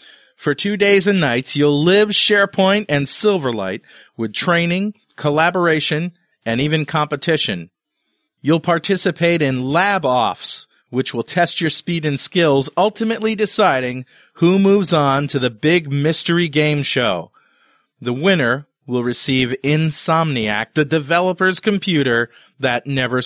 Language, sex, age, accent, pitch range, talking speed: English, male, 40-59, American, 135-180 Hz, 125 wpm